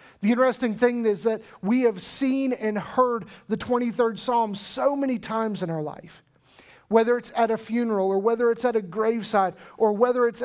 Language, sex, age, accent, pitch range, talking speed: English, male, 40-59, American, 195-240 Hz, 190 wpm